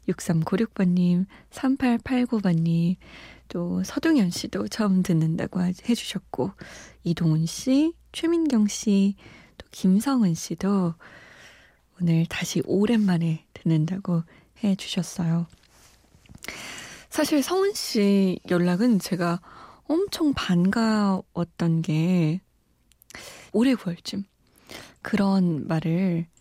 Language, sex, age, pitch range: Korean, female, 20-39, 175-205 Hz